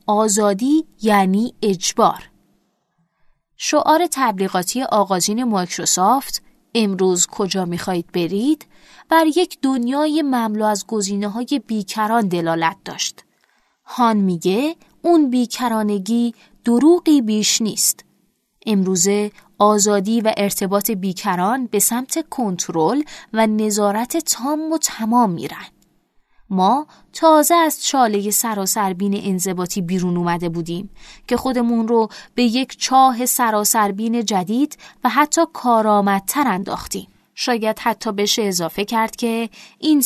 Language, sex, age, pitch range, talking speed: Persian, female, 20-39, 190-255 Hz, 105 wpm